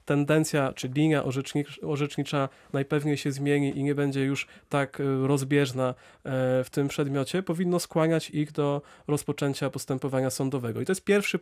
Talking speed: 145 wpm